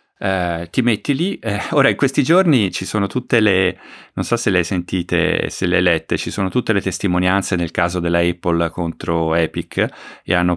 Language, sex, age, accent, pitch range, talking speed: Italian, male, 30-49, native, 85-100 Hz, 205 wpm